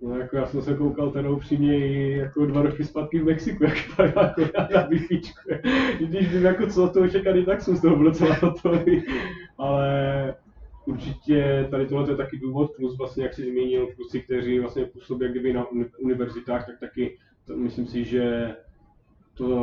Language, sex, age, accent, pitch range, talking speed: Czech, male, 20-39, native, 120-140 Hz, 180 wpm